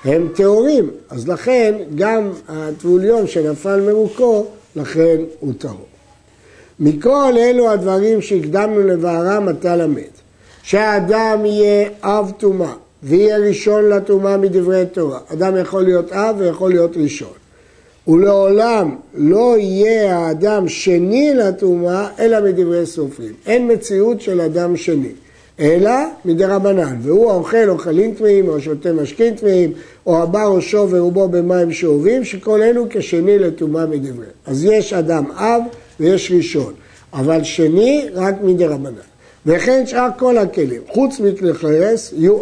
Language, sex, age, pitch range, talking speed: Hebrew, male, 60-79, 160-210 Hz, 125 wpm